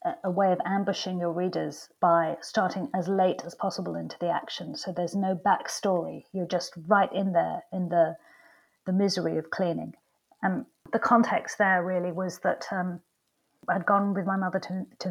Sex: female